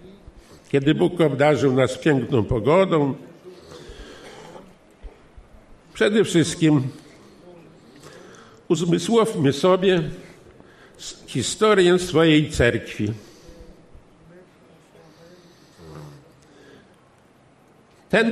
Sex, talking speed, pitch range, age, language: male, 45 wpm, 140-175 Hz, 50-69, Polish